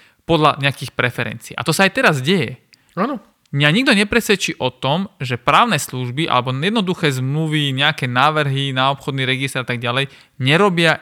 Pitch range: 130-170 Hz